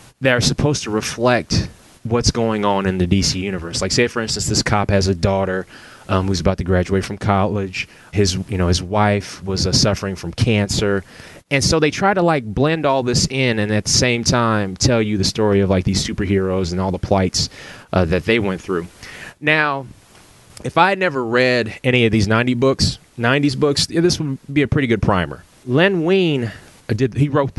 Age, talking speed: 20-39, 210 wpm